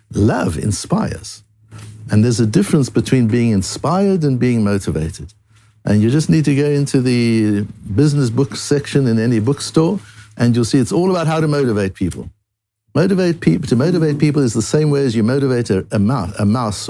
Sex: male